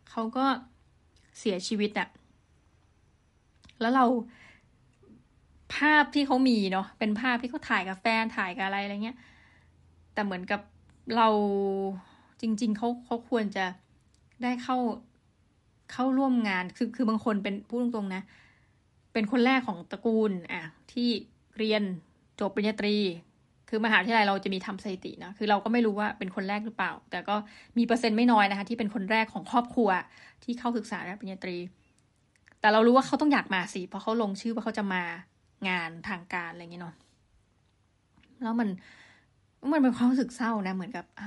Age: 20-39